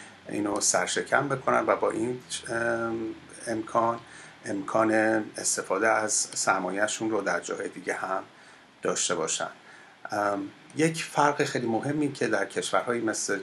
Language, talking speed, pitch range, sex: Persian, 115 wpm, 105-140 Hz, male